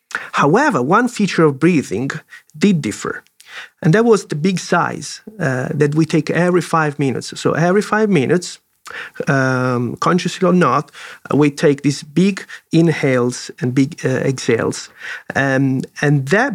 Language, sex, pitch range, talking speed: English, male, 140-180 Hz, 145 wpm